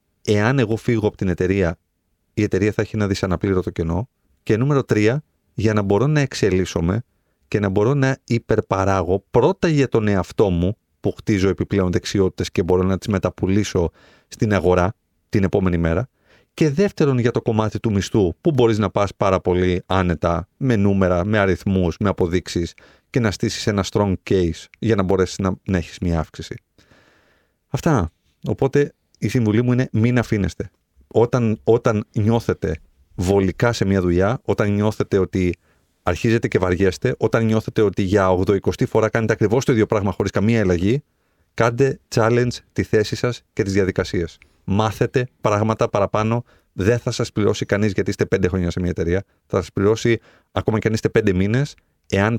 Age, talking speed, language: 30-49, 170 wpm, Greek